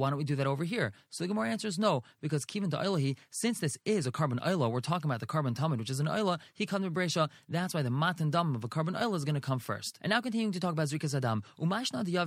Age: 20-39